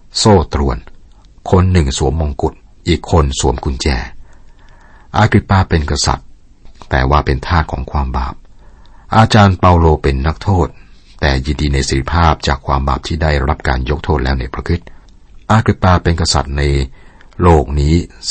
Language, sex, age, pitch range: Thai, male, 60-79, 70-85 Hz